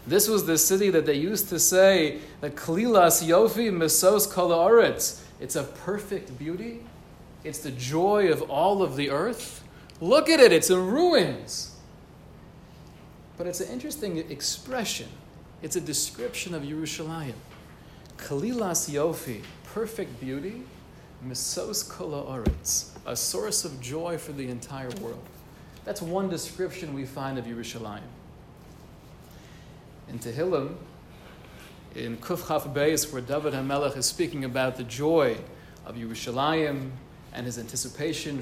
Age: 40-59